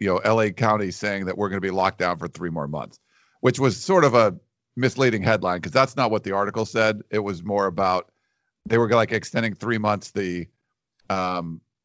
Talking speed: 215 wpm